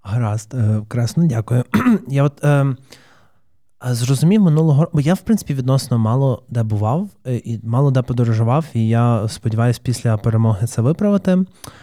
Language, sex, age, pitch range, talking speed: Ukrainian, male, 20-39, 110-135 Hz, 130 wpm